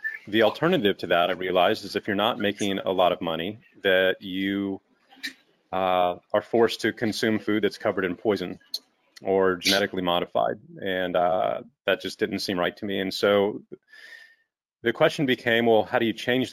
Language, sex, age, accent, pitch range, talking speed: English, male, 30-49, American, 95-110 Hz, 180 wpm